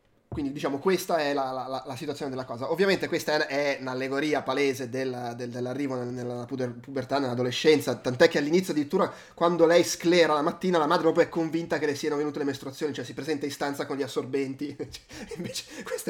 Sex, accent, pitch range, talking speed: male, native, 130-165 Hz, 185 wpm